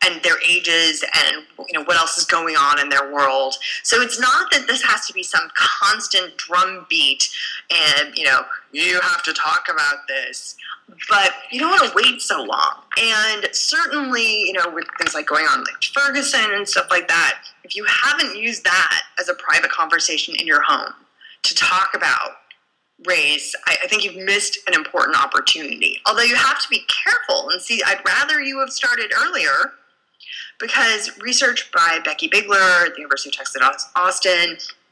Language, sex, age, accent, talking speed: English, female, 20-39, American, 185 wpm